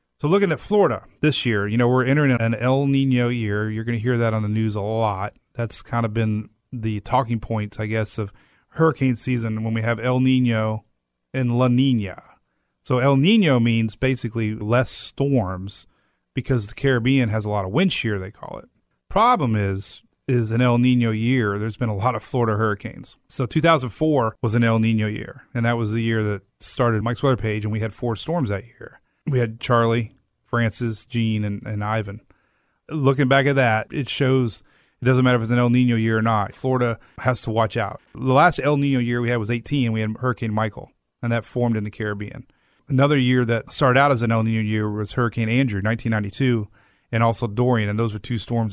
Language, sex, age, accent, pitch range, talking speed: English, male, 30-49, American, 110-130 Hz, 210 wpm